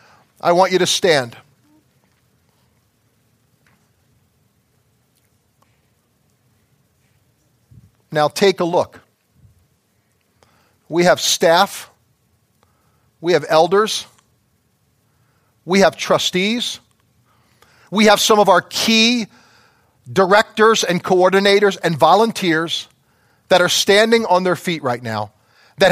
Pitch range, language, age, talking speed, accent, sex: 125-195 Hz, English, 40-59, 90 wpm, American, male